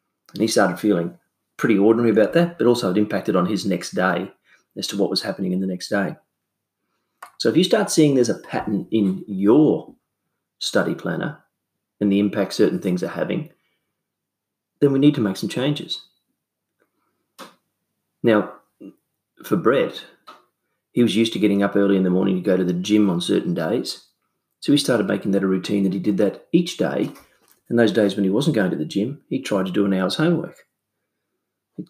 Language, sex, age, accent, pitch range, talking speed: English, male, 30-49, Australian, 95-115 Hz, 195 wpm